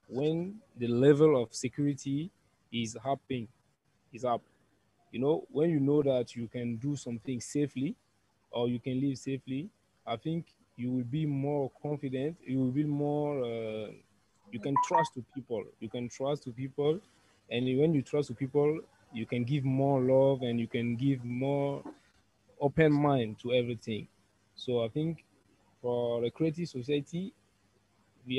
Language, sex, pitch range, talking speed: English, male, 115-145 Hz, 160 wpm